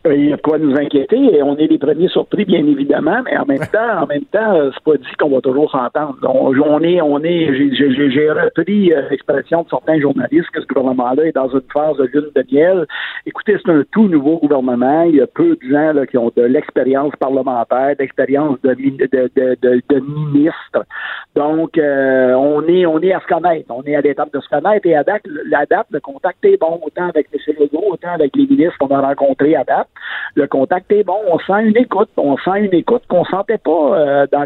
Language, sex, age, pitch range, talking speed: French, male, 50-69, 140-195 Hz, 235 wpm